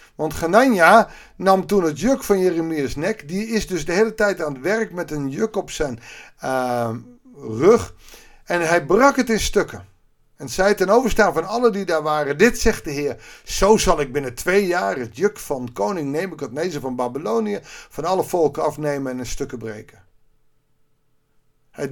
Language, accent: Dutch, Dutch